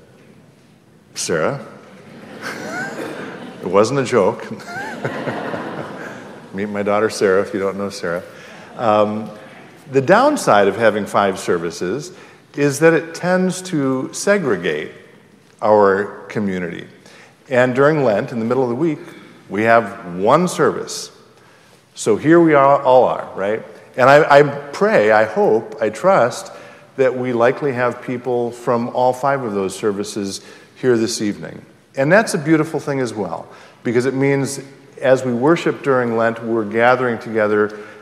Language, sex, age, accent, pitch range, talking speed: English, male, 50-69, American, 105-140 Hz, 140 wpm